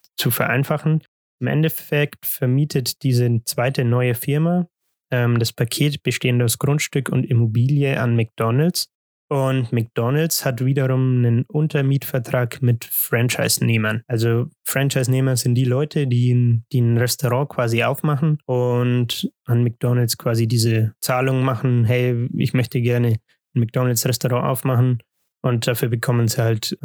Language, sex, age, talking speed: German, male, 20-39, 130 wpm